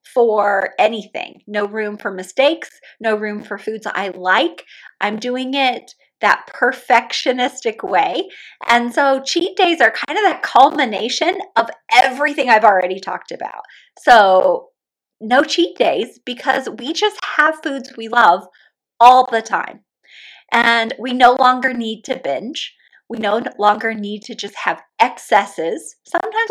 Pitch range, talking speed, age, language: 200-265 Hz, 145 wpm, 30-49, English